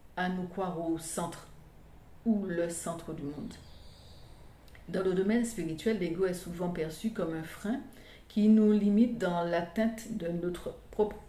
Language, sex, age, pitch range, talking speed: French, female, 50-69, 170-210 Hz, 155 wpm